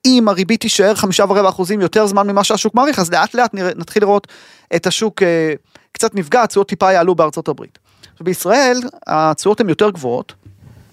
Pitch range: 155-205 Hz